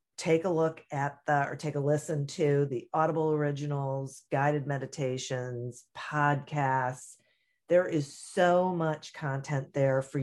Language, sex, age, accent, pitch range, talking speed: English, female, 40-59, American, 135-165 Hz, 135 wpm